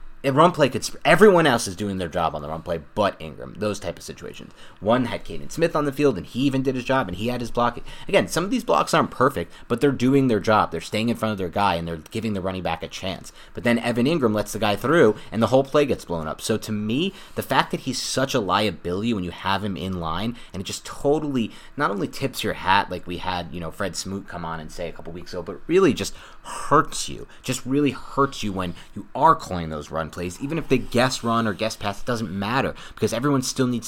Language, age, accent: English, 30-49, American